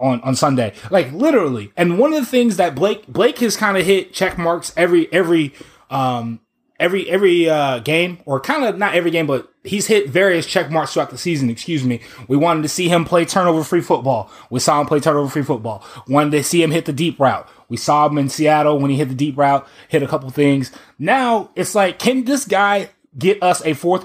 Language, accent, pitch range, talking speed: English, American, 150-200 Hz, 230 wpm